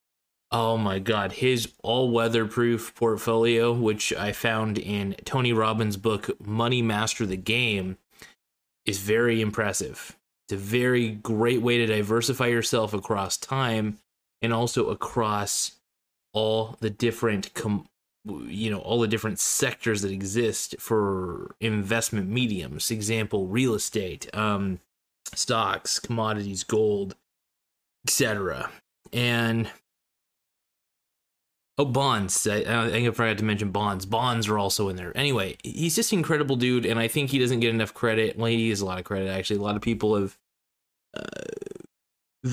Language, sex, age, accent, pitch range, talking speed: English, male, 20-39, American, 105-120 Hz, 140 wpm